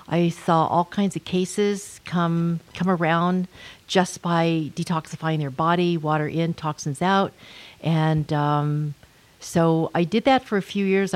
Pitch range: 155-185 Hz